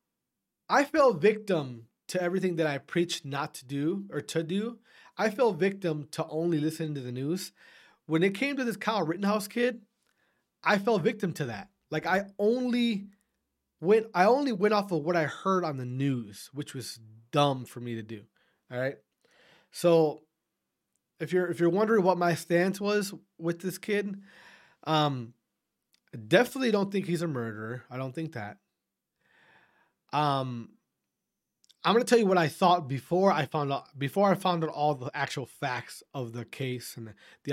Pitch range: 130-190 Hz